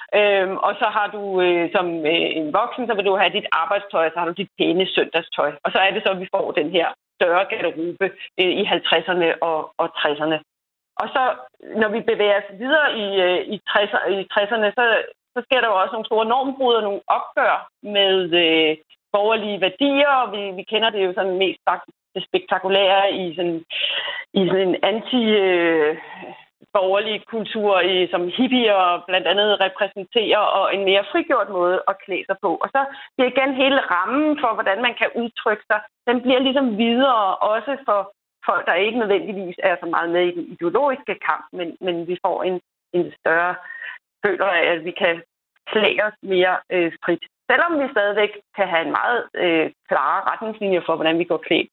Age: 30-49